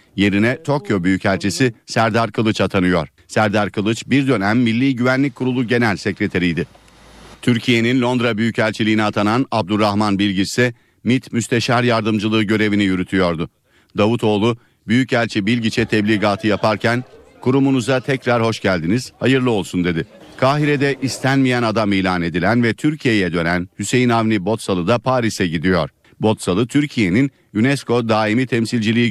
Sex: male